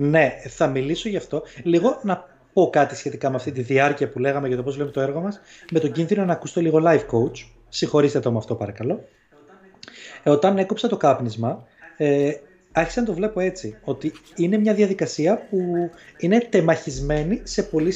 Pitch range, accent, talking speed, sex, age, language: 145-205 Hz, native, 185 wpm, male, 30-49, Greek